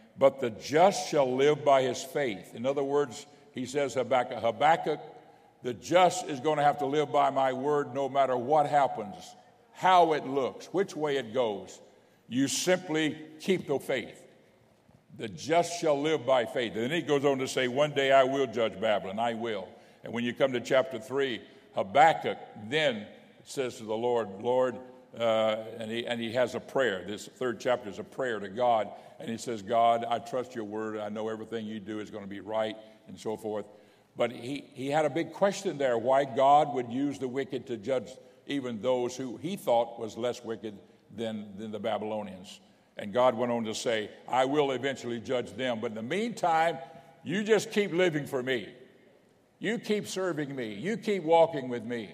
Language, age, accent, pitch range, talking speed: English, 60-79, American, 115-145 Hz, 195 wpm